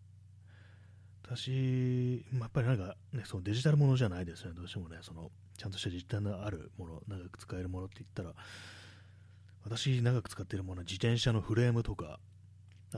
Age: 30-49